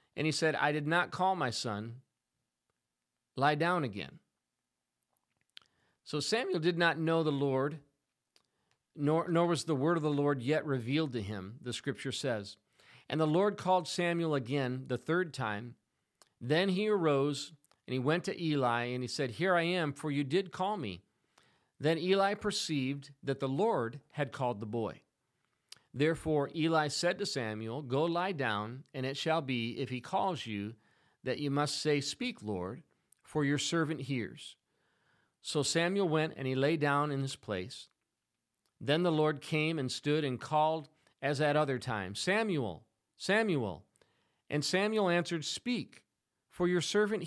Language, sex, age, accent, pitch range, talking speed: English, male, 40-59, American, 130-175 Hz, 165 wpm